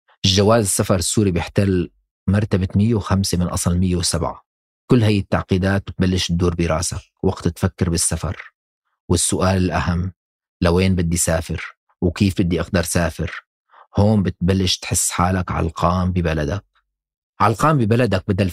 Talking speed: 115 wpm